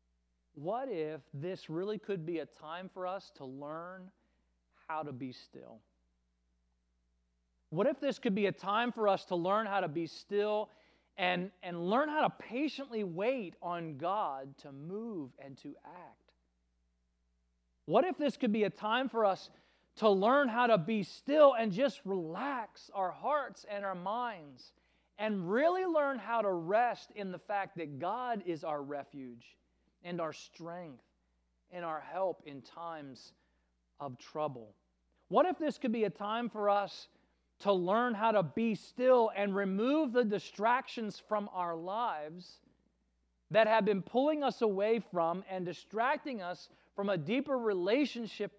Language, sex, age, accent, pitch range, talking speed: English, male, 40-59, American, 145-215 Hz, 160 wpm